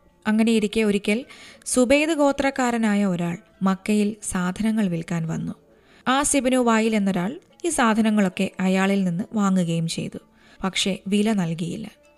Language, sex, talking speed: Malayalam, female, 105 wpm